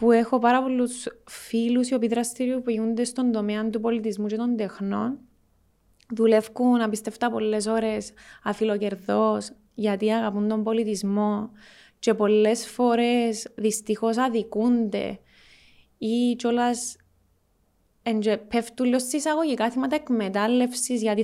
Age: 20-39